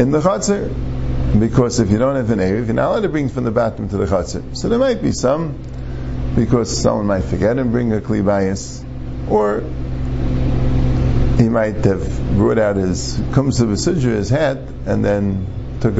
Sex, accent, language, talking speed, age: male, American, English, 185 wpm, 50-69